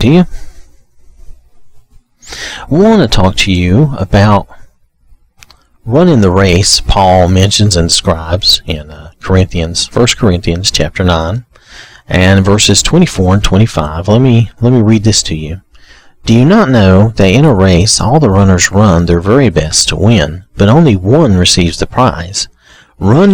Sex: male